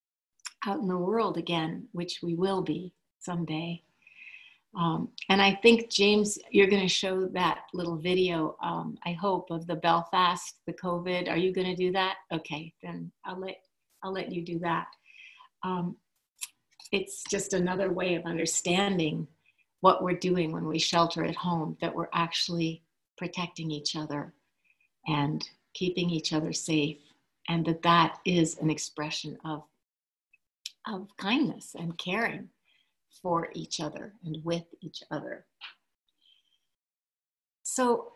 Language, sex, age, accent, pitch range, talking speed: English, female, 60-79, American, 165-200 Hz, 140 wpm